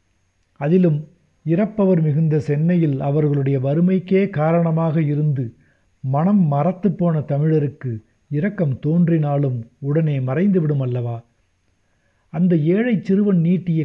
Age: 60-79